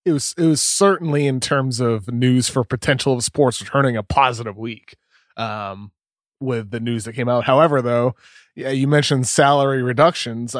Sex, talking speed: male, 175 wpm